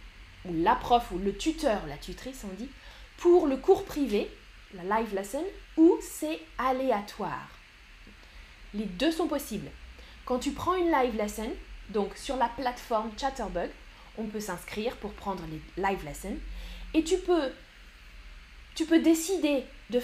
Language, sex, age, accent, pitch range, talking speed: French, female, 20-39, French, 210-295 Hz, 150 wpm